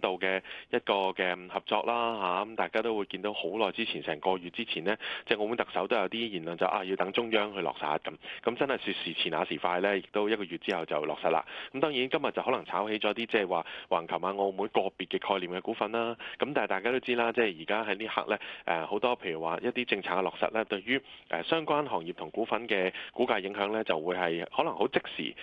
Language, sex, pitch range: Chinese, male, 90-120 Hz